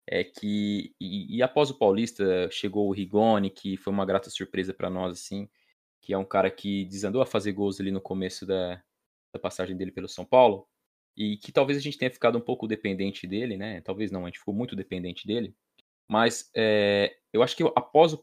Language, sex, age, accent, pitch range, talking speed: Portuguese, male, 20-39, Brazilian, 100-130 Hz, 210 wpm